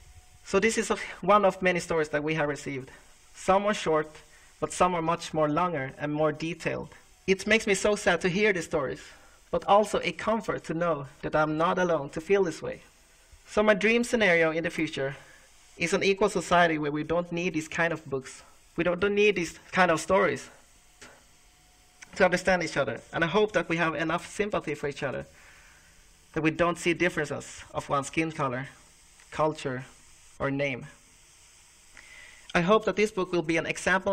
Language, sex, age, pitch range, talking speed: Swedish, male, 30-49, 145-185 Hz, 190 wpm